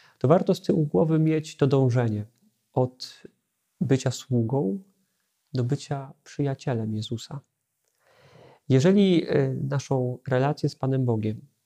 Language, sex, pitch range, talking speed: Polish, male, 125-155 Hz, 110 wpm